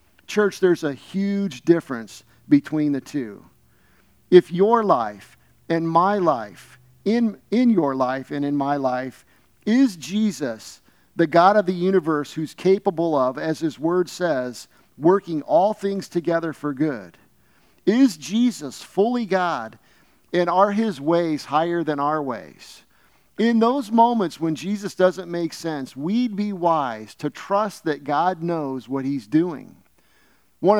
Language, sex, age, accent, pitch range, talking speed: English, male, 50-69, American, 145-190 Hz, 145 wpm